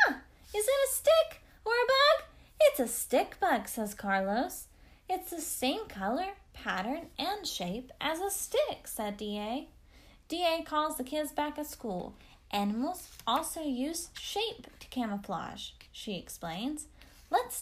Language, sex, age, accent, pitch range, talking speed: English, female, 10-29, American, 210-320 Hz, 140 wpm